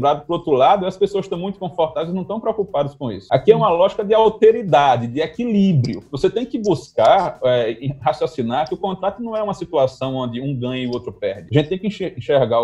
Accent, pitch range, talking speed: Brazilian, 120-180 Hz, 235 wpm